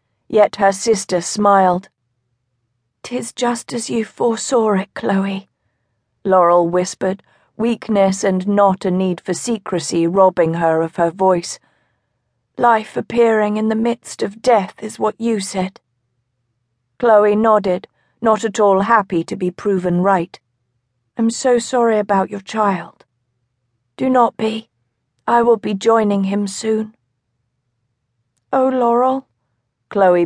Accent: British